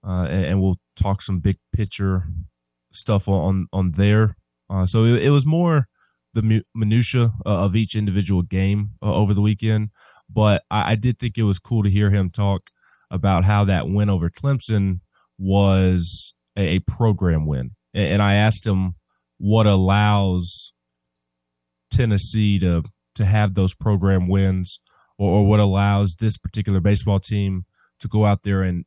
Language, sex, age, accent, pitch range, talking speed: English, male, 20-39, American, 95-105 Hz, 160 wpm